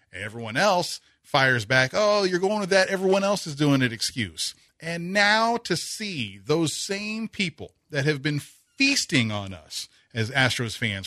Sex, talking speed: male, 170 wpm